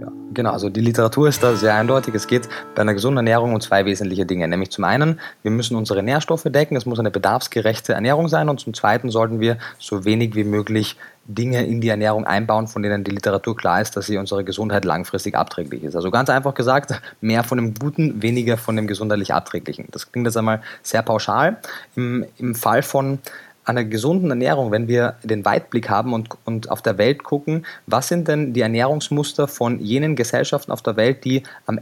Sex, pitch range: male, 110-130 Hz